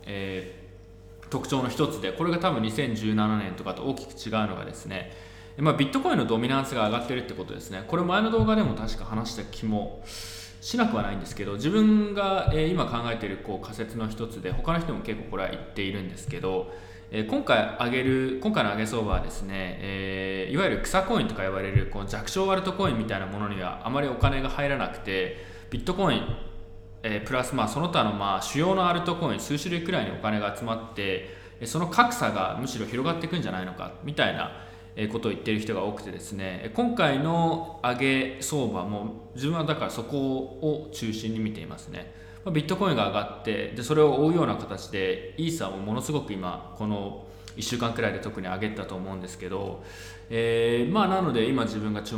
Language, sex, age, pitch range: Japanese, male, 20-39, 95-135 Hz